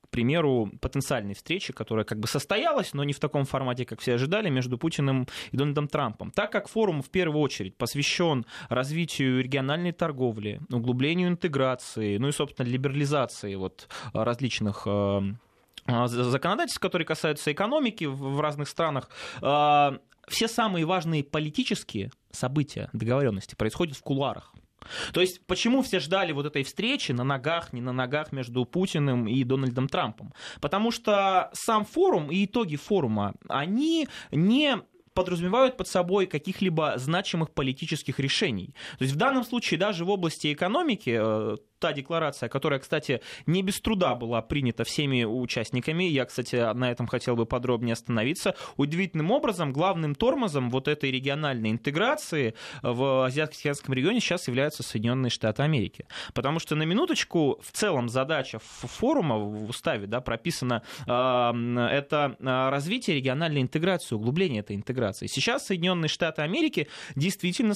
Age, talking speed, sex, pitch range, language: 20-39, 140 wpm, male, 125-180 Hz, Russian